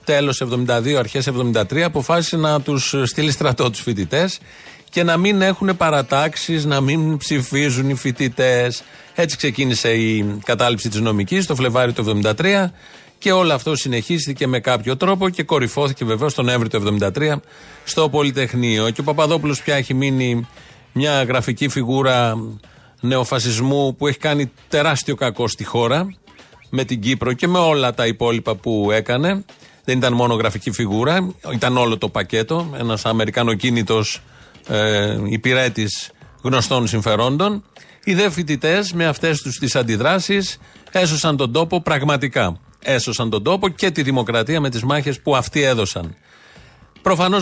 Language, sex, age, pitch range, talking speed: Greek, male, 40-59, 120-155 Hz, 145 wpm